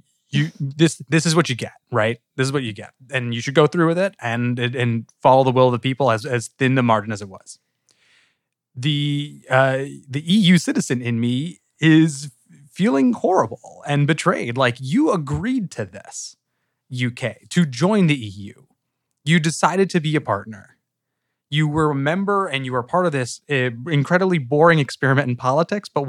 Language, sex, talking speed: English, male, 185 wpm